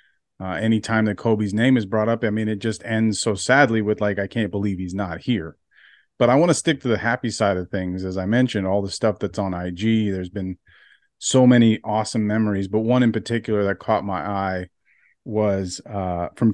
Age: 30-49